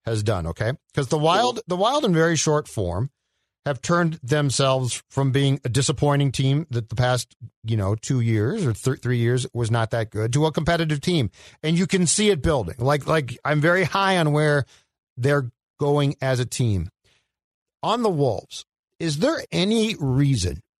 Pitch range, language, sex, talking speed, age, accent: 120-160 Hz, English, male, 185 wpm, 50-69, American